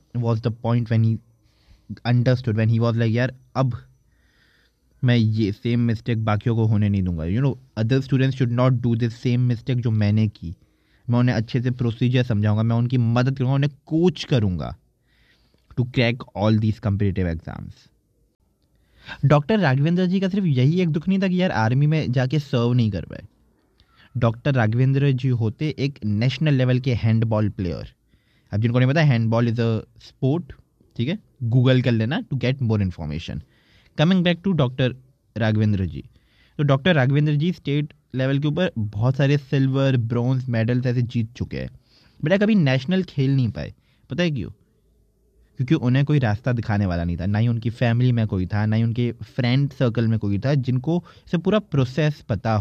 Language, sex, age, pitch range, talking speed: Hindi, male, 20-39, 110-140 Hz, 185 wpm